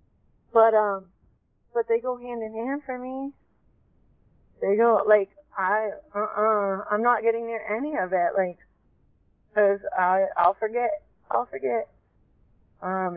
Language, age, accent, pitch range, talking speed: English, 30-49, American, 175-210 Hz, 140 wpm